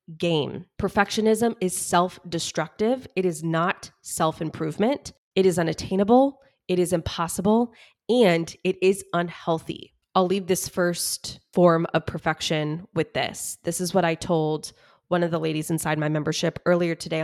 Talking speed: 145 wpm